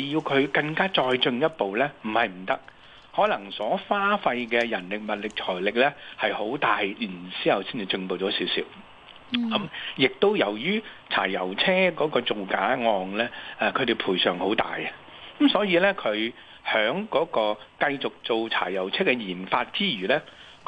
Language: Chinese